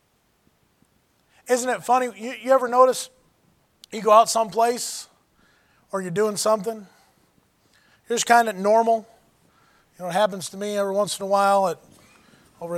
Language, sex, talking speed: English, male, 155 wpm